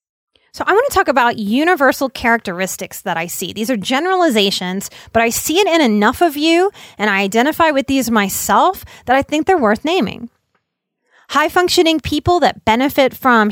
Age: 30-49